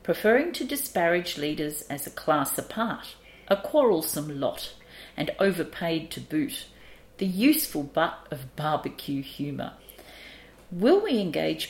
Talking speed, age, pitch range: 125 wpm, 50-69, 155-230 Hz